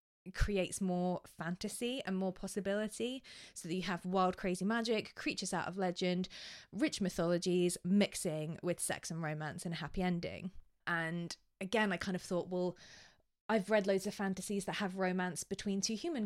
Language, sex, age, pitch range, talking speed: English, female, 20-39, 170-200 Hz, 170 wpm